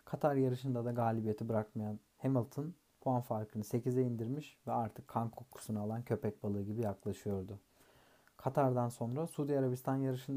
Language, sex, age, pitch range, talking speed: Turkish, male, 40-59, 110-135 Hz, 140 wpm